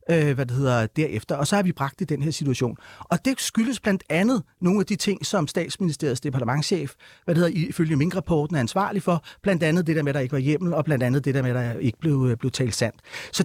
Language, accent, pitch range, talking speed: Danish, native, 145-200 Hz, 255 wpm